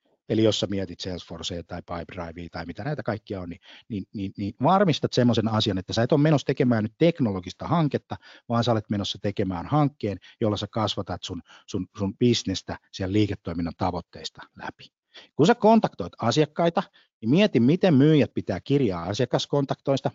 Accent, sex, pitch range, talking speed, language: native, male, 100-135 Hz, 165 wpm, Finnish